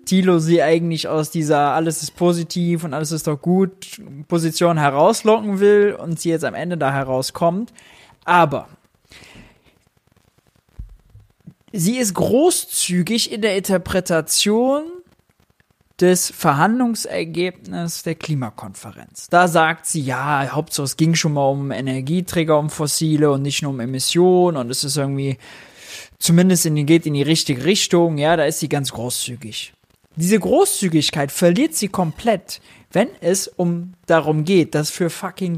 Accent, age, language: German, 20-39, German